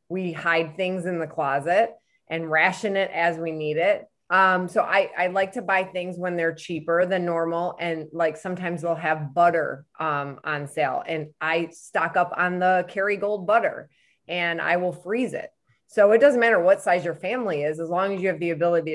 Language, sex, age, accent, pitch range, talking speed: English, female, 20-39, American, 160-185 Hz, 205 wpm